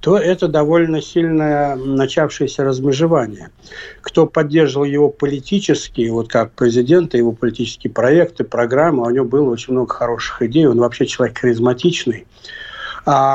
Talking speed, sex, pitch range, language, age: 125 wpm, male, 130-160 Hz, Russian, 60-79